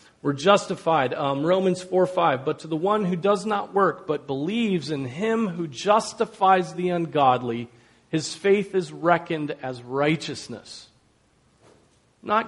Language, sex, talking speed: English, male, 140 wpm